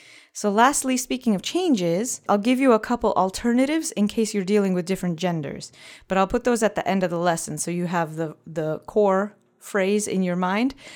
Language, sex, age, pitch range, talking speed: English, female, 30-49, 165-220 Hz, 210 wpm